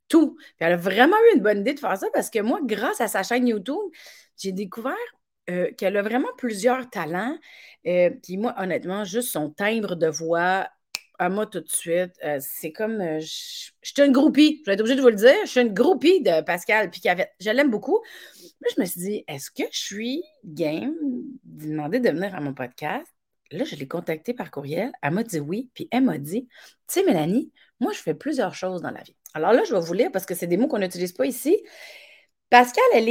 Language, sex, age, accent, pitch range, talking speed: French, female, 30-49, Canadian, 180-280 Hz, 240 wpm